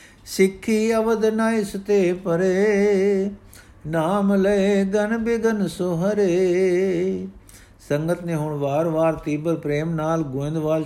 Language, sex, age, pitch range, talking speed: Punjabi, male, 60-79, 140-165 Hz, 95 wpm